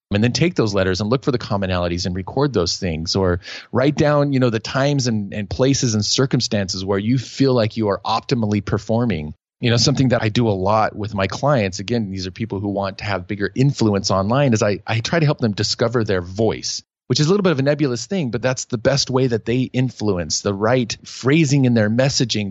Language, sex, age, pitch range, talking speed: English, male, 30-49, 100-125 Hz, 235 wpm